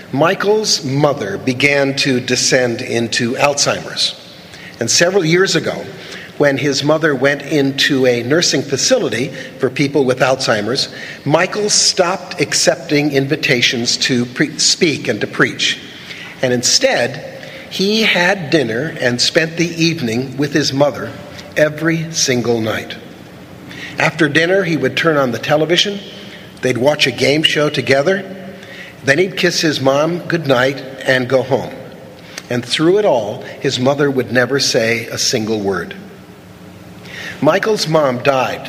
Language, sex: English, male